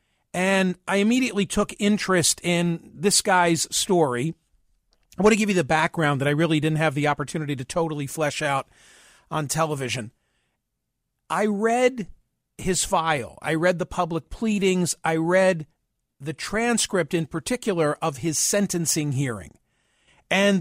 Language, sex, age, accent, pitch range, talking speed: English, male, 50-69, American, 160-200 Hz, 145 wpm